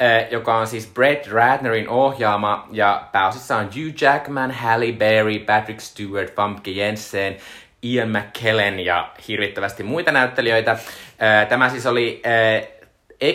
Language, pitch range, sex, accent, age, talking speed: Finnish, 105-125 Hz, male, native, 20-39, 130 wpm